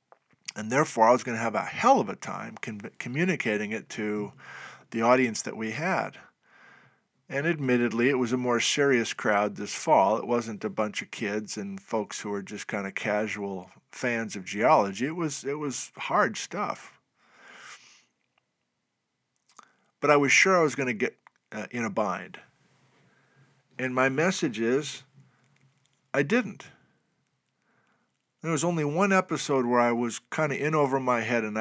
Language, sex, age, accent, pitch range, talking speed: English, male, 50-69, American, 110-140 Hz, 165 wpm